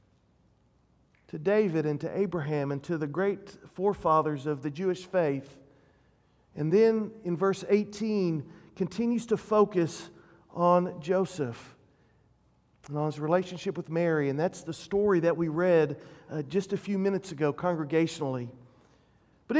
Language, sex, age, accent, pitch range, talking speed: English, male, 40-59, American, 175-255 Hz, 140 wpm